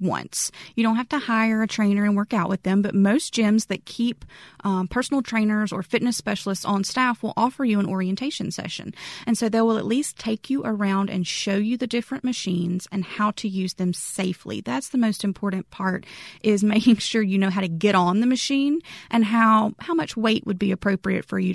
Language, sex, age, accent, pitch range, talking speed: English, female, 30-49, American, 195-240 Hz, 220 wpm